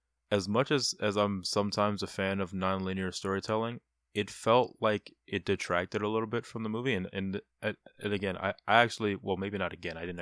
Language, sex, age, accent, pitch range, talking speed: English, male, 20-39, American, 90-105 Hz, 205 wpm